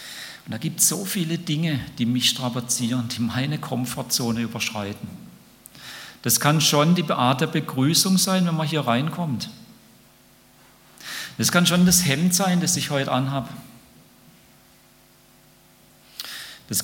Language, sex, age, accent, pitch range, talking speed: German, male, 40-59, German, 105-130 Hz, 130 wpm